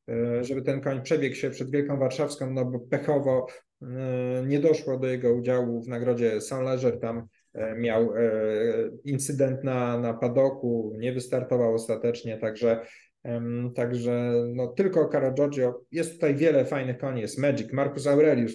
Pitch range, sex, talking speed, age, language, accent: 115-135 Hz, male, 140 wpm, 20-39, Polish, native